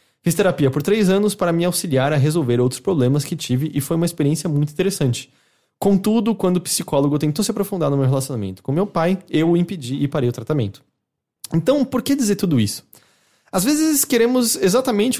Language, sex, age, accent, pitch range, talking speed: English, male, 20-39, Brazilian, 135-195 Hz, 195 wpm